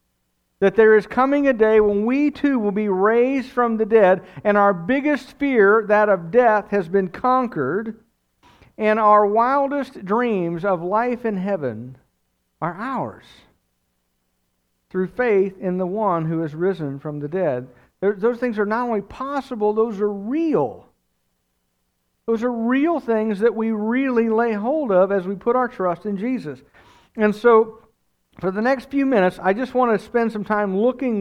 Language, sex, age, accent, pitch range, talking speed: English, male, 50-69, American, 185-245 Hz, 165 wpm